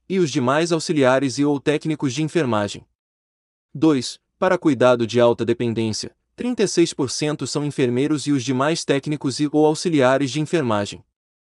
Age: 20-39